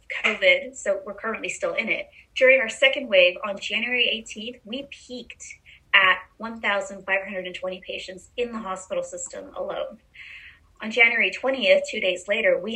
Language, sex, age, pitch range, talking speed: English, female, 20-39, 195-275 Hz, 145 wpm